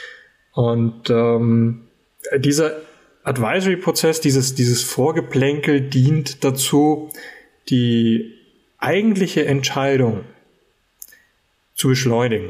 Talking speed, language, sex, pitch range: 65 wpm, German, male, 125-170 Hz